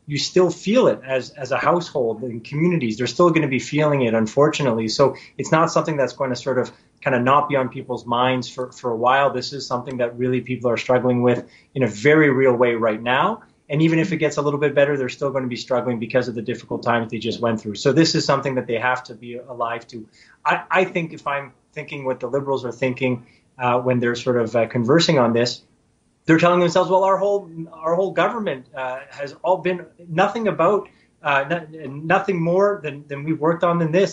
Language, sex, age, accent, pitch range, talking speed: English, male, 30-49, American, 125-160 Hz, 235 wpm